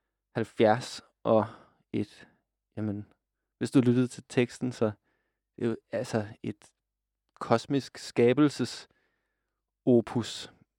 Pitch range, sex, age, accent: 110-125 Hz, male, 20-39, native